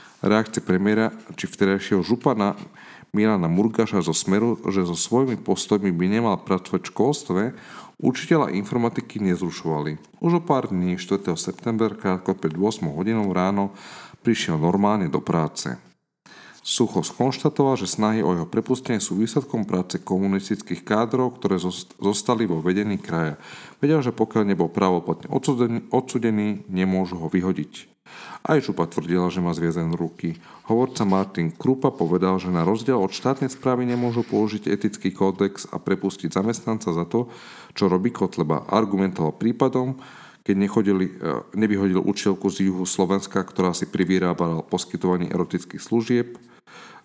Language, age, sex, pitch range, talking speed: Slovak, 40-59, male, 90-115 Hz, 135 wpm